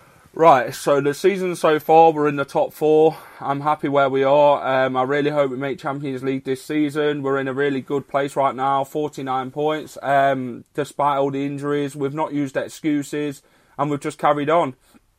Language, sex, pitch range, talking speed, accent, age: English, male, 140-160 Hz, 200 wpm, British, 20-39